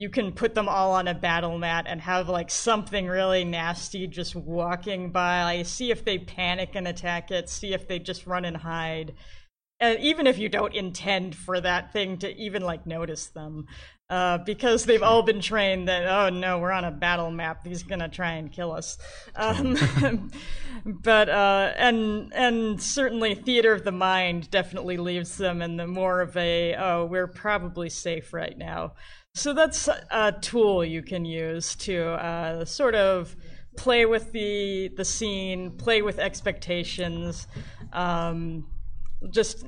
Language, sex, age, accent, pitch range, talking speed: English, female, 30-49, American, 170-200 Hz, 170 wpm